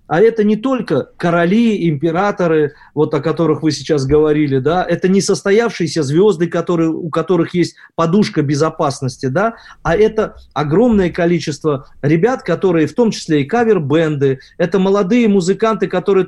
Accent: native